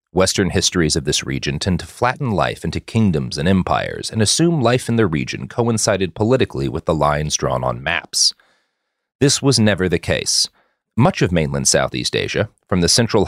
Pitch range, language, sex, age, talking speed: 85-125 Hz, English, male, 40-59, 180 wpm